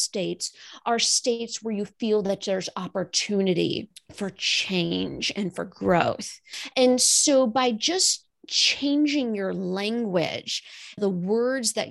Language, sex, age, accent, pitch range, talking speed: English, female, 30-49, American, 190-260 Hz, 120 wpm